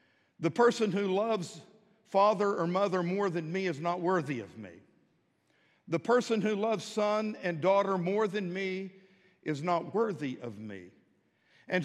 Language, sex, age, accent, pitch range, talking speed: English, male, 60-79, American, 165-210 Hz, 155 wpm